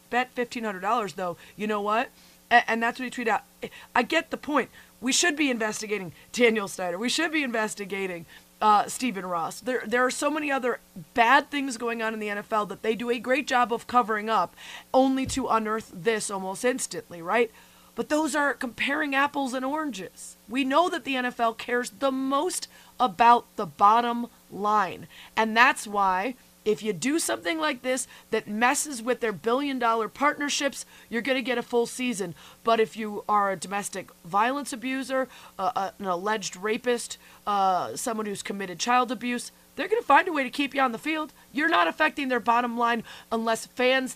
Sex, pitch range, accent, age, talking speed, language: female, 215-265 Hz, American, 30-49, 190 wpm, English